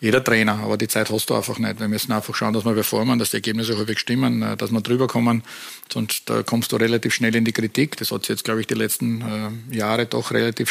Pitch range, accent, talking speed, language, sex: 110-125 Hz, Austrian, 250 wpm, German, male